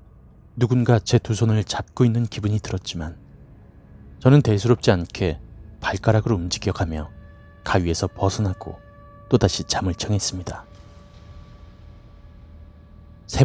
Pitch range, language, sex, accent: 90-115 Hz, Korean, male, native